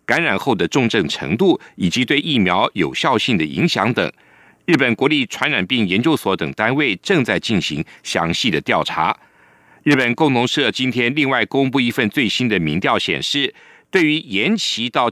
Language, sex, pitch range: Chinese, male, 110-160 Hz